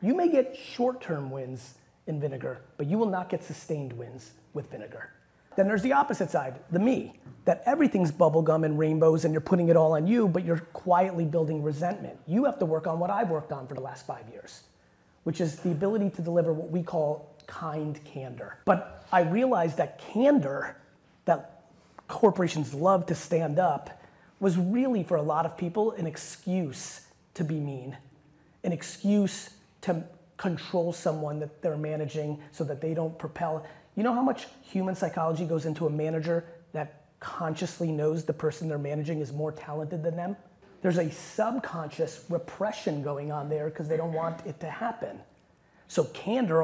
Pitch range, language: 155-185 Hz, English